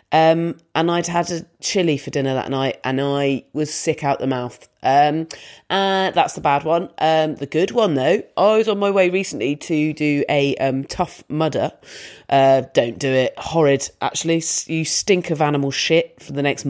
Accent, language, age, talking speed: British, English, 30-49, 195 wpm